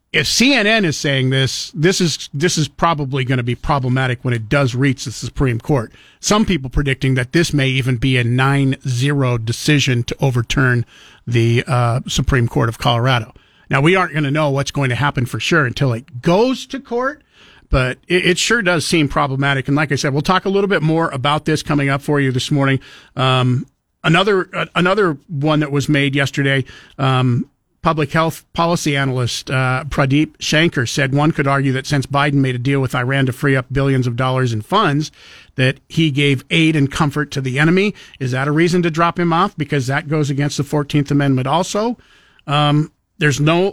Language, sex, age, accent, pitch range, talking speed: English, male, 50-69, American, 130-155 Hz, 205 wpm